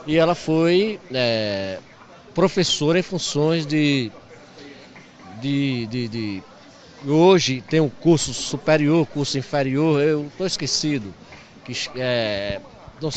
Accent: Brazilian